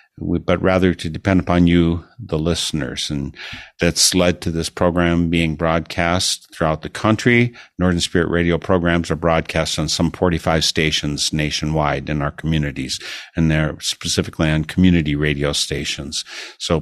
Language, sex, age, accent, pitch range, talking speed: English, male, 50-69, American, 80-95 Hz, 145 wpm